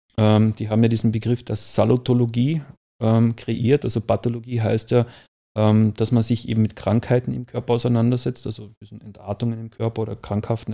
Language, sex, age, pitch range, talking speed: German, male, 30-49, 110-120 Hz, 170 wpm